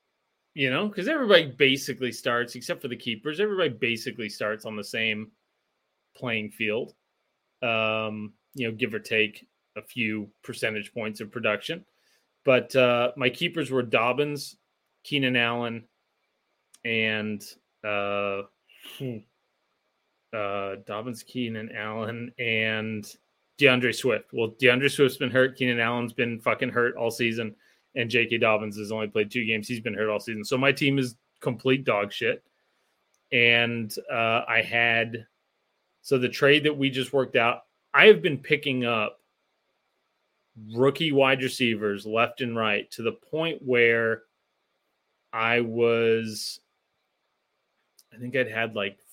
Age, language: 30-49, English